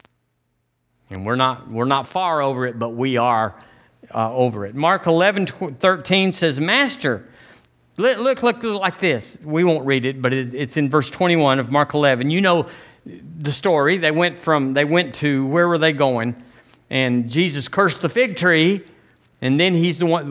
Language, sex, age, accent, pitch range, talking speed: English, male, 50-69, American, 130-180 Hz, 185 wpm